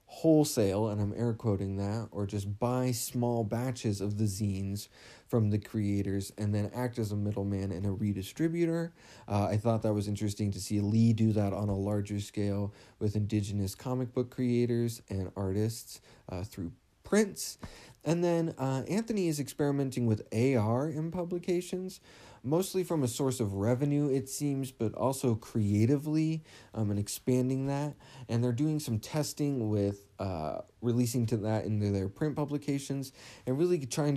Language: English